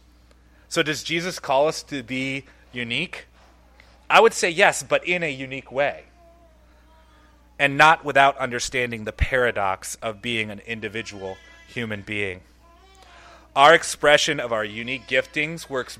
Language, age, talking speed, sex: English, 30-49, 135 wpm, male